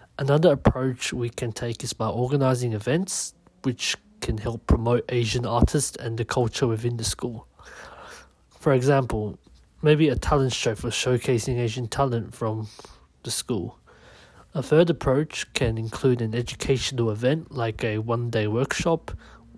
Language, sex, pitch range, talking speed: English, male, 115-135 Hz, 140 wpm